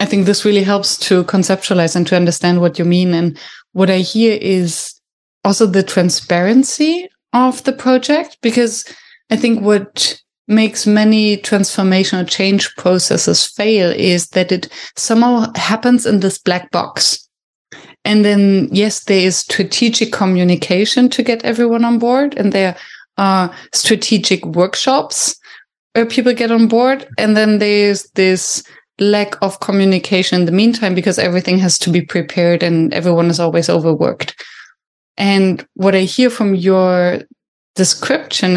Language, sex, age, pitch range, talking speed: English, female, 20-39, 180-225 Hz, 145 wpm